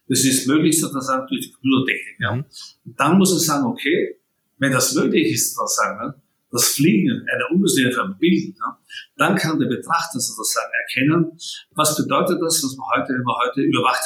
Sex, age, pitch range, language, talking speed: male, 50-69, 135-190 Hz, German, 160 wpm